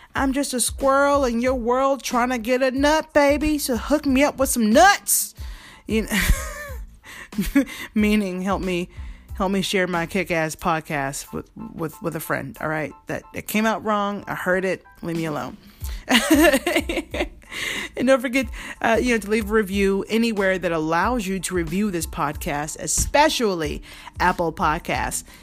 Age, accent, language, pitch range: 30-49, American, English, 180-250 Hz